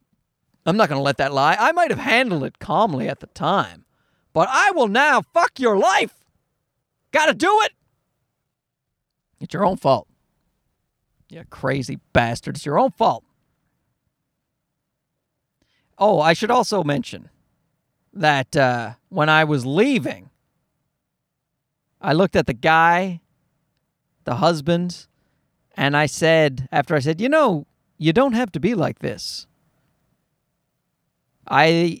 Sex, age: male, 40-59